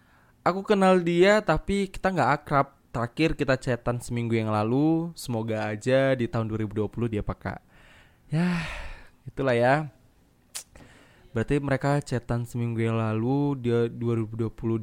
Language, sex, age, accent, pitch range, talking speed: Indonesian, male, 20-39, native, 115-145 Hz, 125 wpm